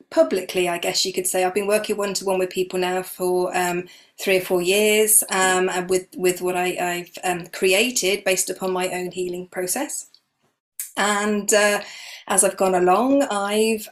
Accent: British